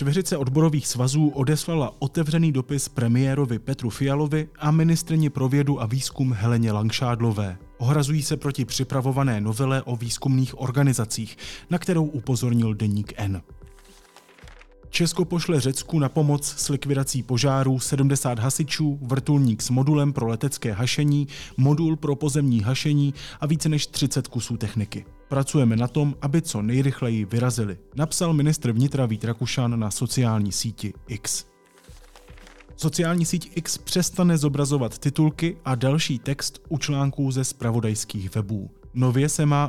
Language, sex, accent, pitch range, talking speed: Czech, male, native, 115-150 Hz, 135 wpm